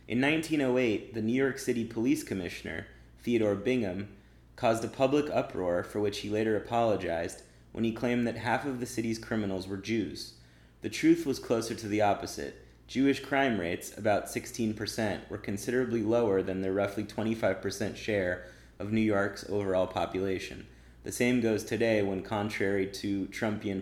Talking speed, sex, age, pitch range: 160 wpm, male, 30-49, 95-115 Hz